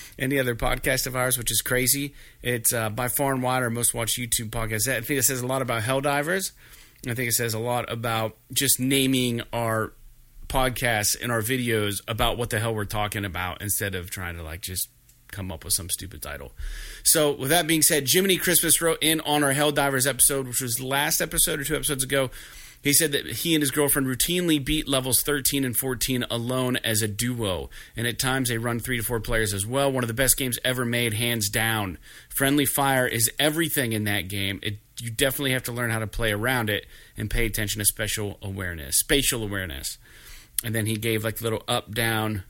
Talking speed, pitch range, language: 215 wpm, 110-135 Hz, English